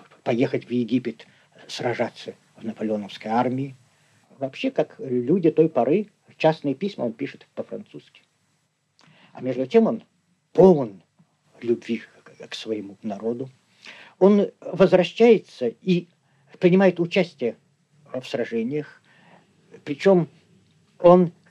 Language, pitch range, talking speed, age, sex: Russian, 130-185 Hz, 100 wpm, 50-69, male